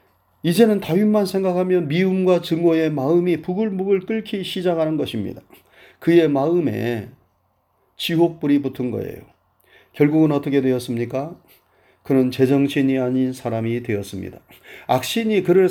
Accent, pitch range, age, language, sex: native, 125-175 Hz, 30-49, Korean, male